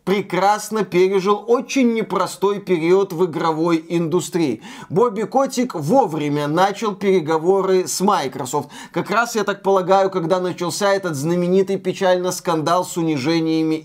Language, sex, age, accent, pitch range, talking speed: Russian, male, 20-39, native, 170-215 Hz, 120 wpm